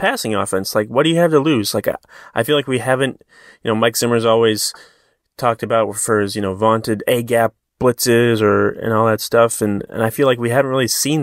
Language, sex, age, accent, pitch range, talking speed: English, male, 30-49, American, 105-120 Hz, 230 wpm